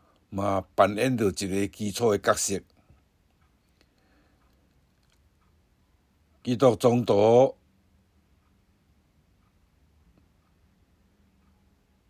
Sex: male